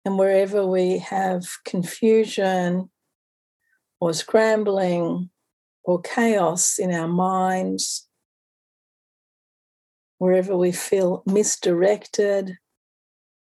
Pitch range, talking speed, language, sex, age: 175-210 Hz, 70 wpm, English, female, 50-69